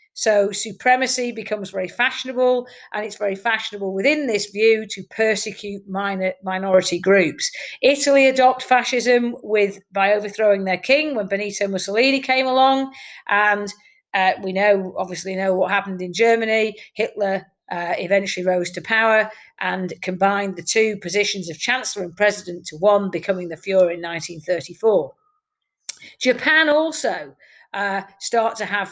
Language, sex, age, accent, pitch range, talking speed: English, female, 40-59, British, 195-245 Hz, 140 wpm